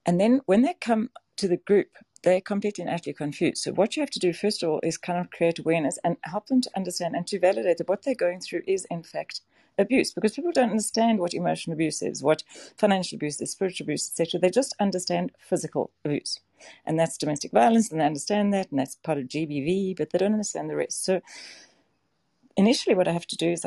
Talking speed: 230 wpm